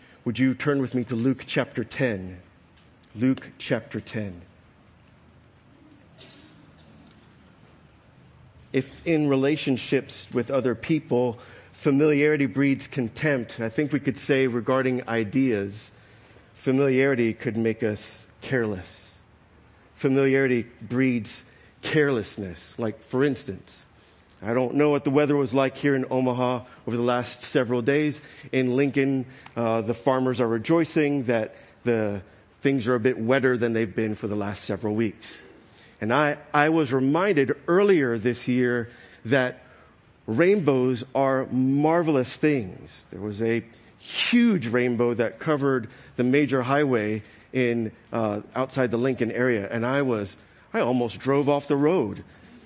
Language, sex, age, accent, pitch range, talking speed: English, male, 50-69, American, 115-140 Hz, 130 wpm